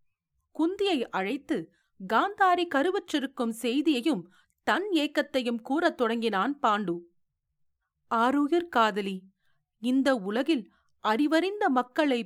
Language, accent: Tamil, native